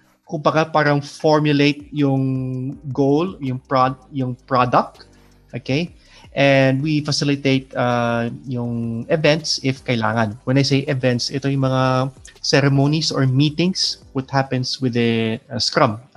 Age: 20-39